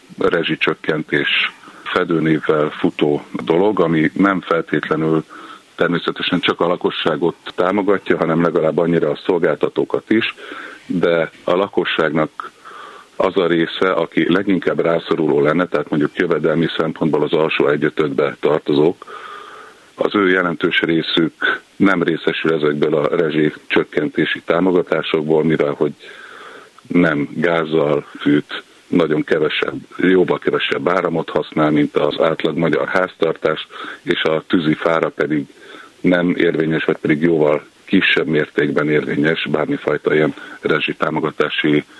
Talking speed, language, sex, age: 115 wpm, Hungarian, male, 50-69